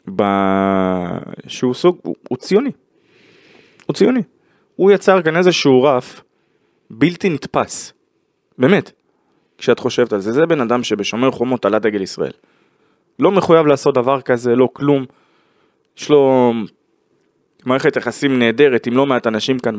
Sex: male